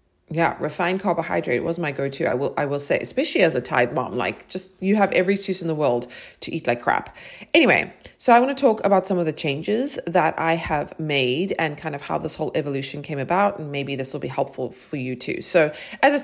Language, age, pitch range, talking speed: English, 30-49, 150-210 Hz, 240 wpm